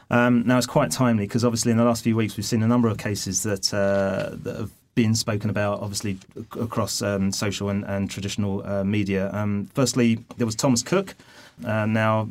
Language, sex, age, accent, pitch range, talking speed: English, male, 30-49, British, 100-120 Hz, 205 wpm